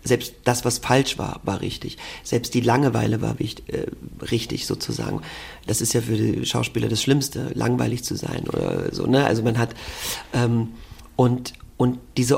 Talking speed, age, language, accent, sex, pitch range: 175 wpm, 40-59, German, German, male, 115-140 Hz